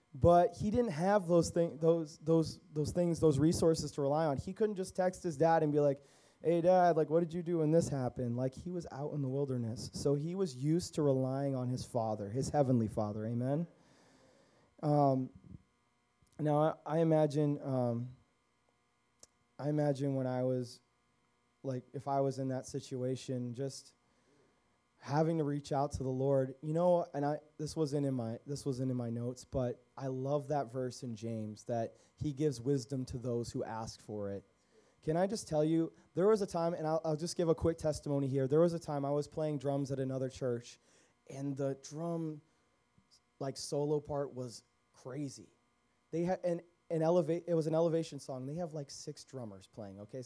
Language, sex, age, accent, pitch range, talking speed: English, male, 20-39, American, 125-160 Hz, 200 wpm